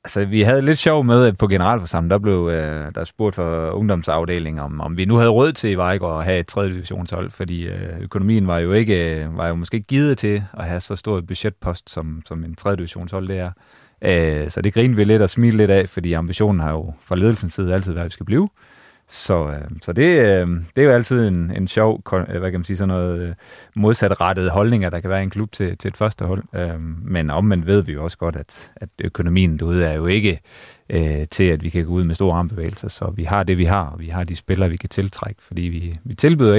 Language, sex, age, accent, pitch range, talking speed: Danish, male, 30-49, native, 85-105 Hz, 235 wpm